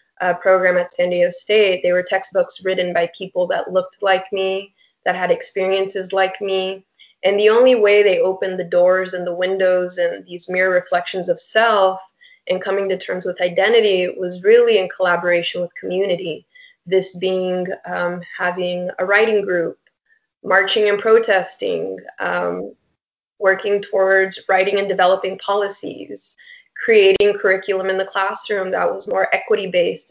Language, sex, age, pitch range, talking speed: English, female, 20-39, 180-215 Hz, 150 wpm